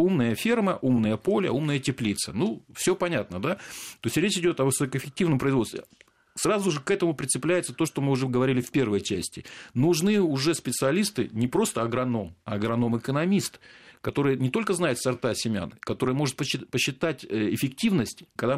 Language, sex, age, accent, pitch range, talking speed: Russian, male, 40-59, native, 110-150 Hz, 160 wpm